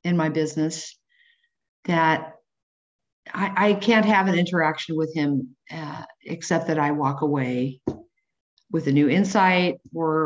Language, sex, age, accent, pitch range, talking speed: English, female, 50-69, American, 155-195 Hz, 135 wpm